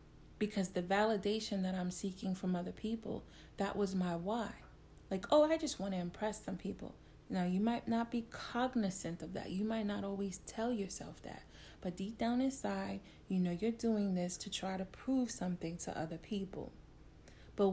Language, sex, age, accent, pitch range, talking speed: English, female, 30-49, American, 180-220 Hz, 185 wpm